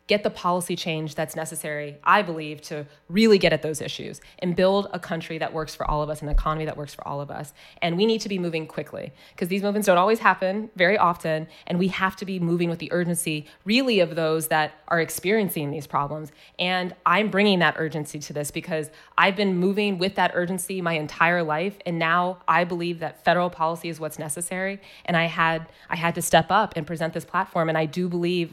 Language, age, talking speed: English, 20-39, 225 wpm